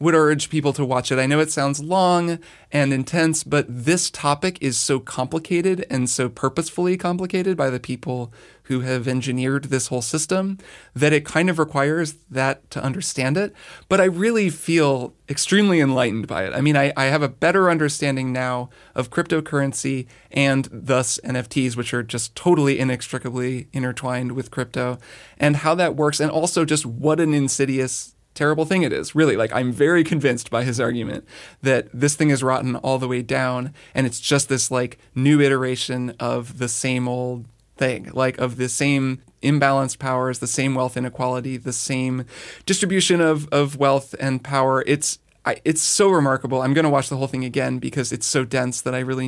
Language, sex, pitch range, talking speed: English, male, 125-150 Hz, 185 wpm